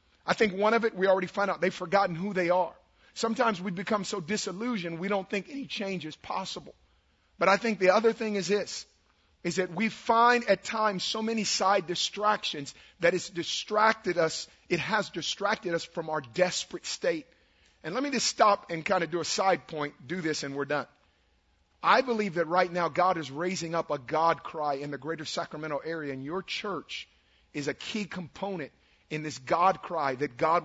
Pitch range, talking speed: 150-195 Hz, 200 wpm